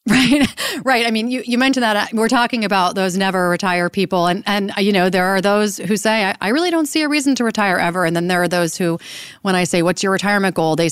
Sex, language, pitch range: female, English, 170-220 Hz